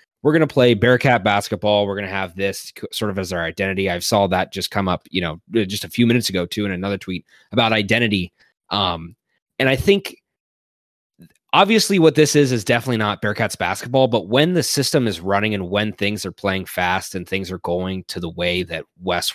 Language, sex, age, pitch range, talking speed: English, male, 20-39, 95-125 Hz, 215 wpm